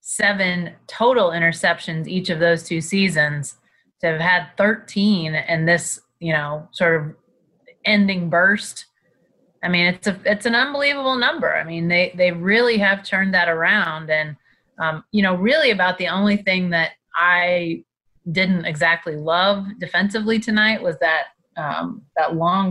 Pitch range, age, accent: 165-195 Hz, 30-49, American